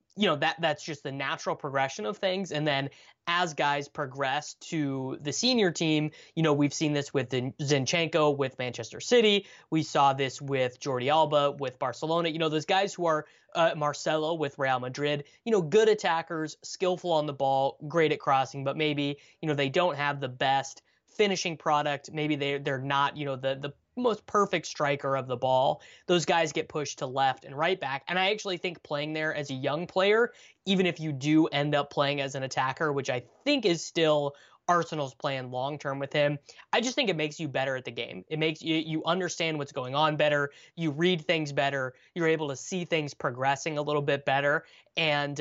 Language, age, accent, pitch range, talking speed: English, 20-39, American, 140-170 Hz, 210 wpm